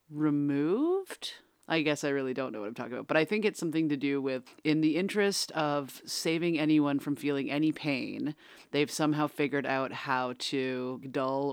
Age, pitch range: 30-49, 135-160 Hz